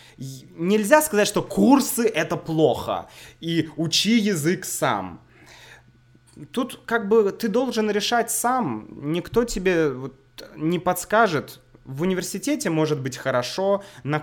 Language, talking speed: Russian, 115 wpm